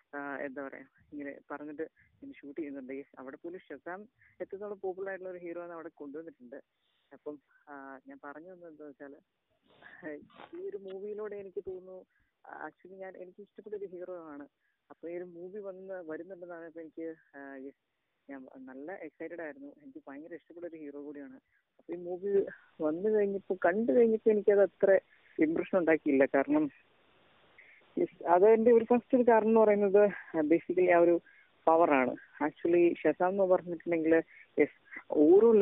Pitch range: 145-195 Hz